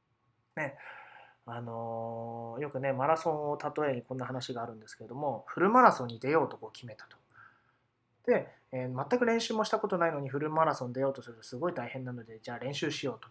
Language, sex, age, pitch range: Japanese, male, 20-39, 125-190 Hz